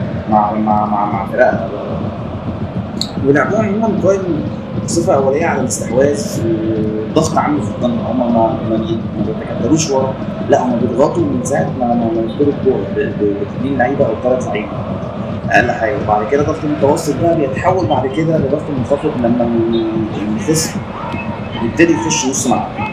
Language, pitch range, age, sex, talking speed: Arabic, 110-170 Hz, 20-39, male, 115 wpm